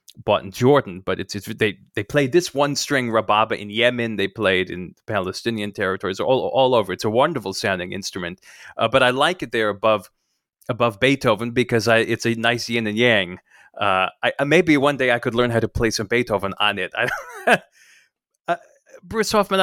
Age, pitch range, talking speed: 30-49, 110-145 Hz, 195 wpm